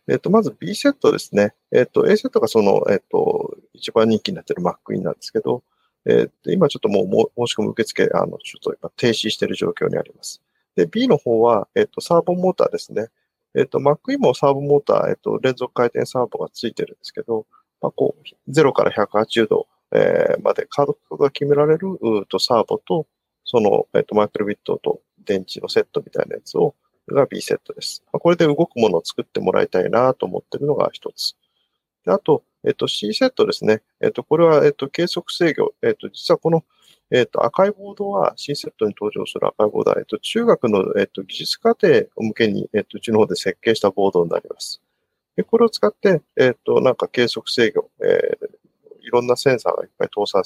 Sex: male